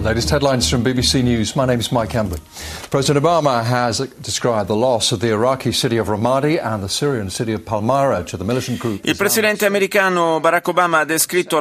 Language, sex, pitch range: Italian, male, 120-145 Hz